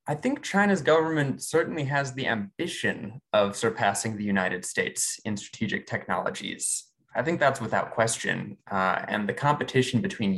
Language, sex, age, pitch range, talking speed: English, male, 20-39, 100-130 Hz, 150 wpm